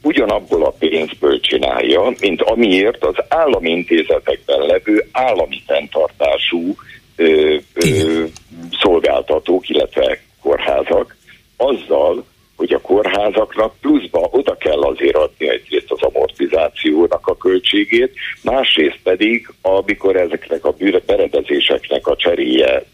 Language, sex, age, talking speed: Hungarian, male, 60-79, 95 wpm